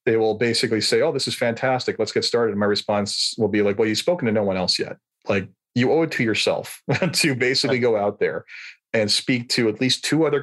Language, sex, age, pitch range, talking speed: English, male, 40-59, 105-130 Hz, 245 wpm